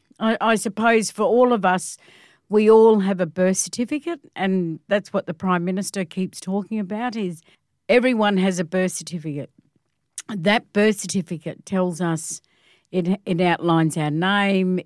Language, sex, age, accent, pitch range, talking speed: English, female, 50-69, Australian, 165-205 Hz, 150 wpm